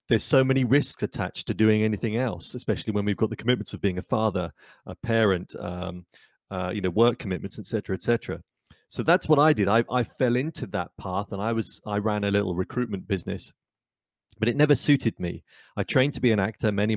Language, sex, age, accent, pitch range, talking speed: English, male, 30-49, British, 100-125 Hz, 225 wpm